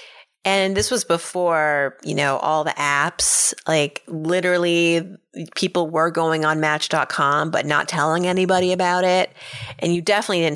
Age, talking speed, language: 30-49, 150 wpm, English